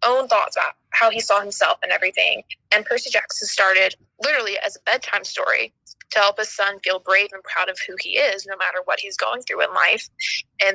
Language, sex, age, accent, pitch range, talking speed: English, female, 20-39, American, 190-265 Hz, 220 wpm